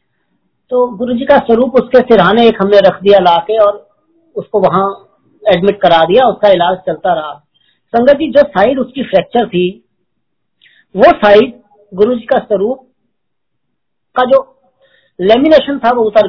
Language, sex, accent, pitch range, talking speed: Hindi, female, native, 185-245 Hz, 145 wpm